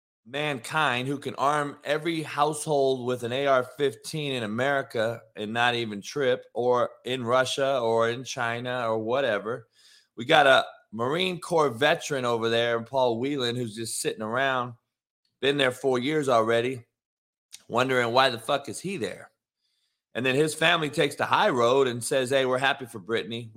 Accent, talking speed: American, 165 wpm